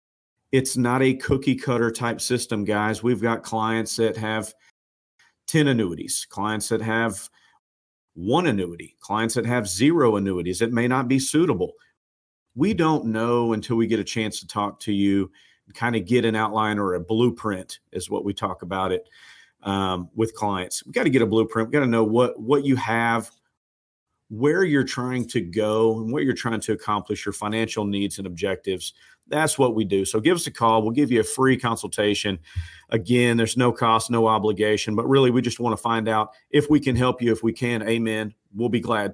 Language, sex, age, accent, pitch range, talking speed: English, male, 40-59, American, 105-120 Hz, 200 wpm